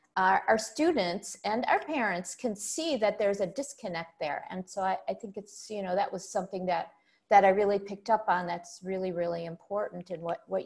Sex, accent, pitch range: female, American, 200-255 Hz